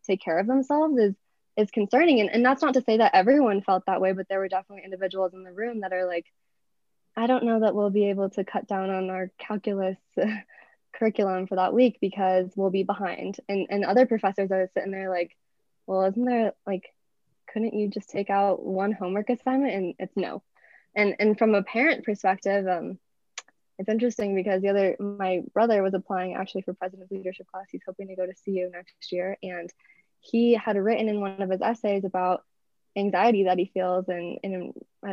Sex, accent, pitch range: female, American, 190-220 Hz